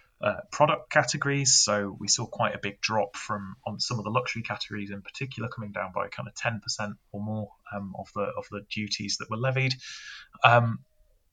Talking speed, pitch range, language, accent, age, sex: 195 wpm, 105-125 Hz, English, British, 20-39, male